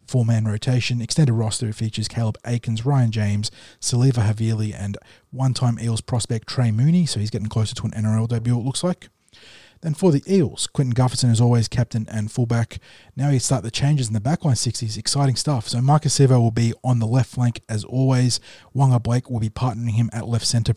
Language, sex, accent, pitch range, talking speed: English, male, Australian, 115-130 Hz, 200 wpm